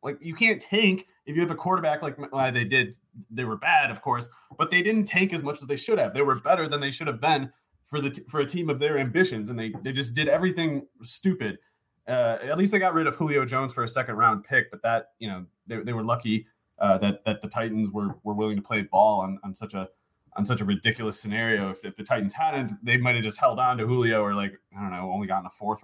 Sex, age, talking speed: male, 30-49, 265 wpm